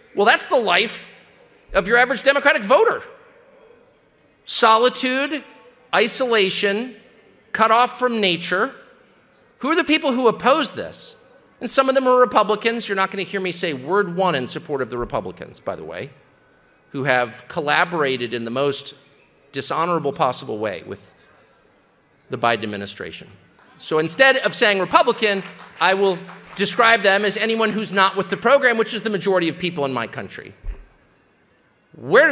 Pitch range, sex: 175-245 Hz, male